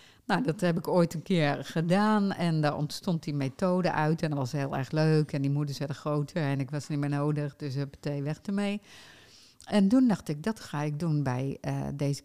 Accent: Dutch